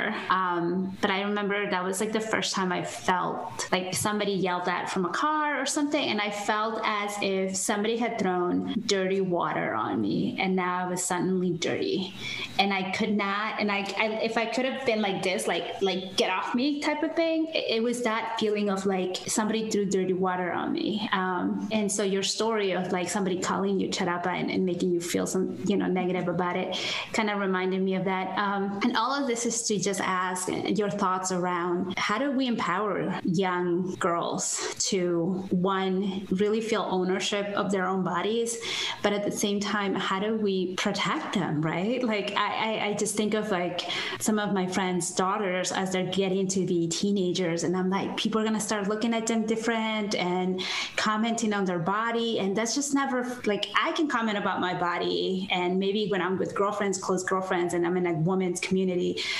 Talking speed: 200 wpm